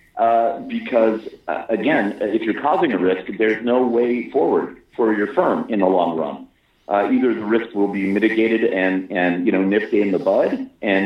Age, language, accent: 40-59, English, American